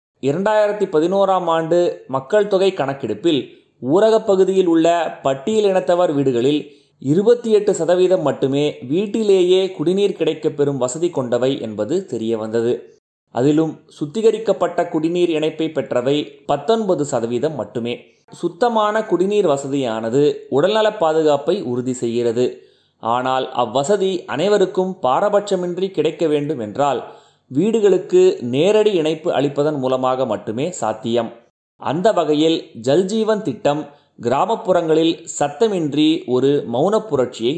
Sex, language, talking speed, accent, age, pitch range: male, Tamil, 95 wpm, native, 30-49, 135-190 Hz